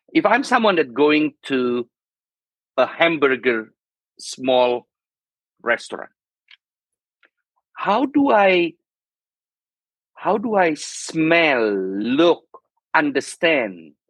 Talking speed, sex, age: 85 wpm, male, 50-69